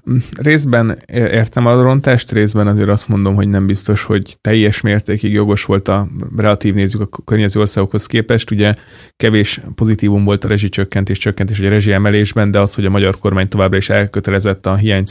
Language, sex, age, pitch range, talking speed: Hungarian, male, 20-39, 100-105 Hz, 170 wpm